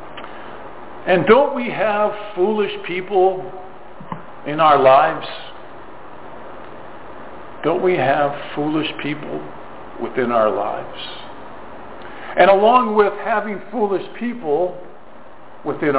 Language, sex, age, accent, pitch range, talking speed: English, male, 50-69, American, 150-195 Hz, 90 wpm